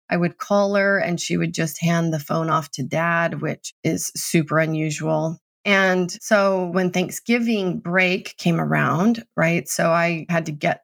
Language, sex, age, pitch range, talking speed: English, female, 30-49, 170-230 Hz, 170 wpm